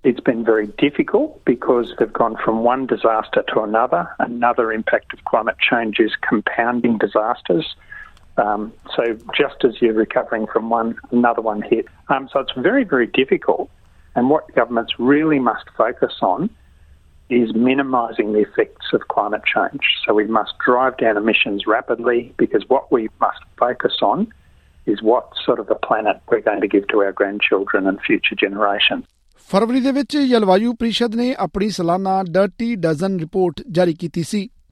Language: Punjabi